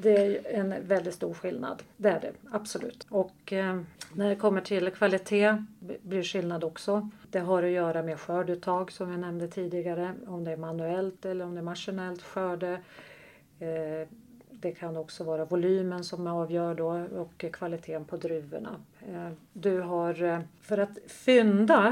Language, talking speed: Swedish, 165 wpm